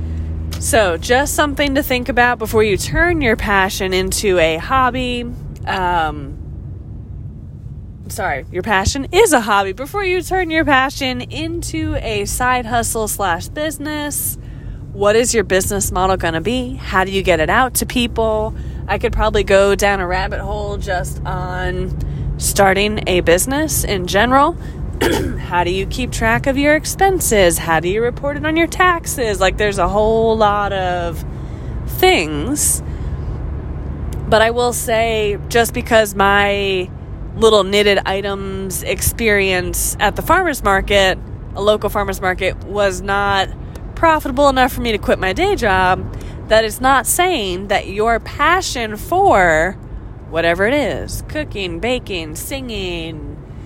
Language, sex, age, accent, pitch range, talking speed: English, female, 20-39, American, 180-255 Hz, 145 wpm